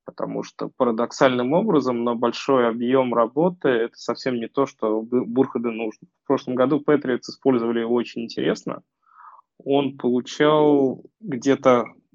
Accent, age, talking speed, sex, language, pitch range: native, 20-39, 130 wpm, male, Russian, 120-140 Hz